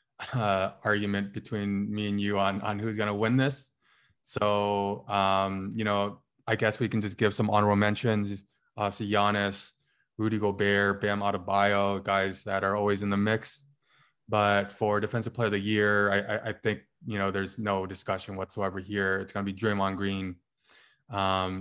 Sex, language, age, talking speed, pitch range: male, English, 20-39, 175 wpm, 100-115 Hz